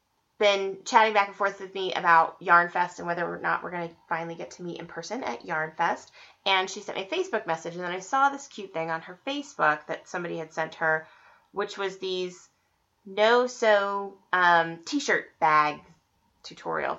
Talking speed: 190 wpm